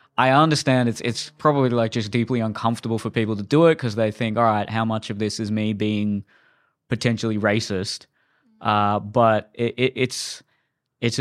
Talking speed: 180 wpm